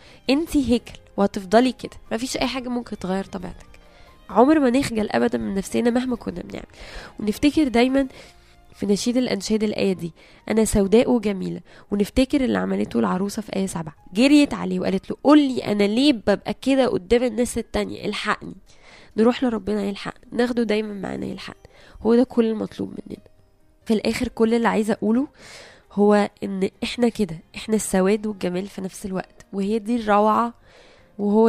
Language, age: Arabic, 10-29